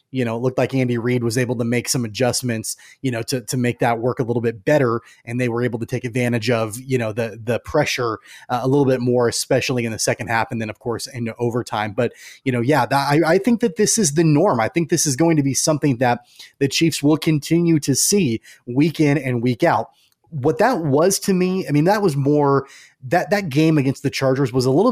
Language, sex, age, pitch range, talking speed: English, male, 30-49, 125-155 Hz, 255 wpm